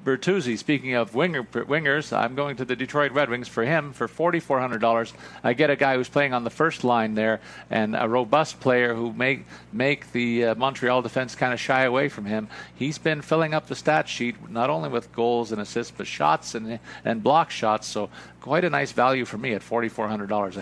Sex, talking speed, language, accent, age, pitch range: male, 220 wpm, English, American, 50-69, 115-140 Hz